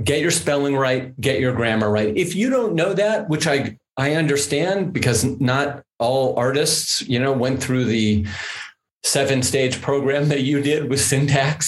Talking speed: 175 wpm